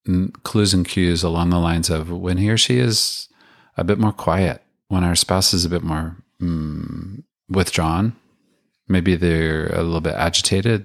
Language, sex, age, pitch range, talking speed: English, male, 40-59, 85-105 Hz, 170 wpm